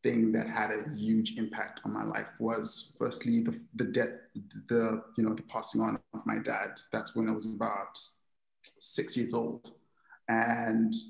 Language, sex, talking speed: English, male, 175 wpm